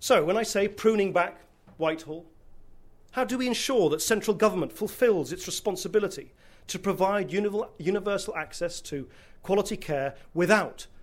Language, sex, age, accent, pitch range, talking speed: English, male, 40-59, British, 155-200 Hz, 135 wpm